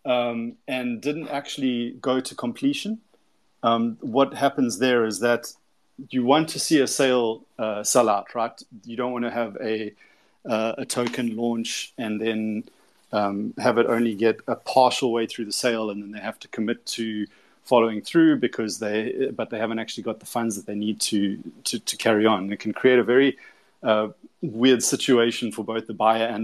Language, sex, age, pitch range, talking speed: English, male, 30-49, 110-125 Hz, 200 wpm